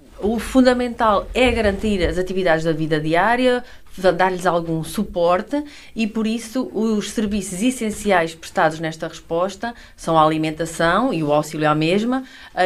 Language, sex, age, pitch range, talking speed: Hungarian, female, 30-49, 160-205 Hz, 140 wpm